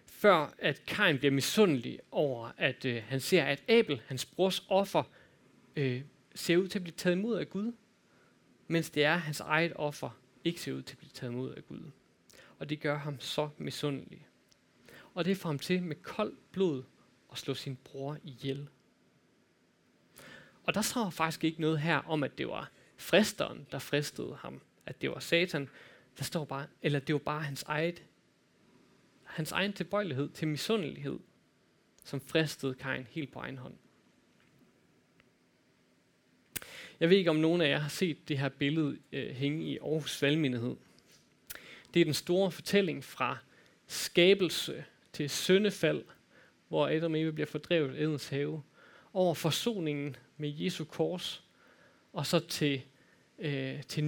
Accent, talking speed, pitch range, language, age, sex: native, 160 wpm, 140-175 Hz, Danish, 30-49, male